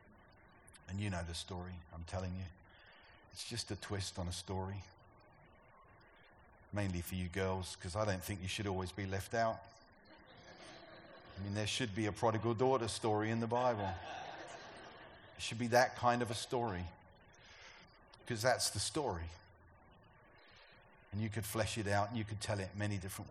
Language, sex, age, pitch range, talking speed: English, male, 40-59, 95-120 Hz, 170 wpm